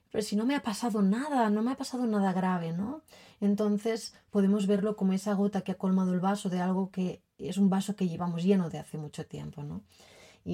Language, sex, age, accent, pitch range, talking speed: Spanish, female, 30-49, Spanish, 180-215 Hz, 230 wpm